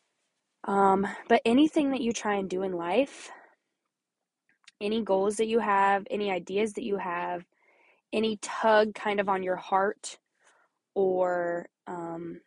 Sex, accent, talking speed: female, American, 140 wpm